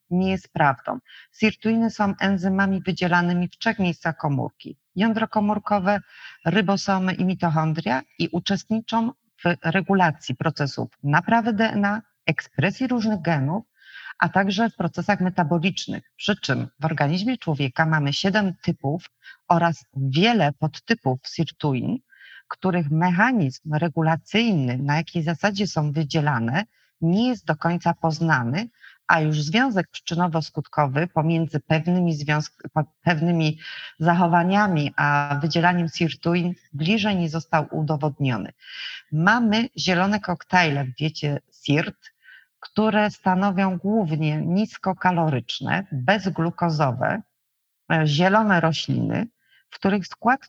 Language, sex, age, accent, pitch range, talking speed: Polish, female, 40-59, native, 160-205 Hz, 105 wpm